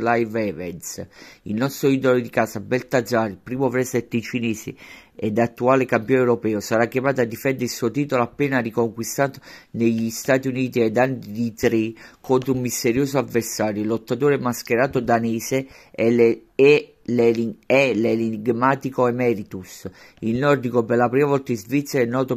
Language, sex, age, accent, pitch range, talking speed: Italian, male, 50-69, native, 115-130 Hz, 145 wpm